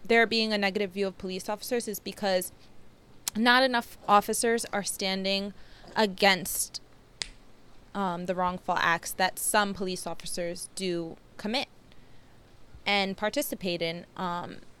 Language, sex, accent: English, female, American